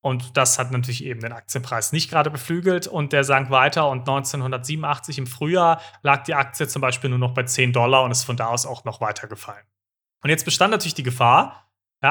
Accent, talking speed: German, 220 wpm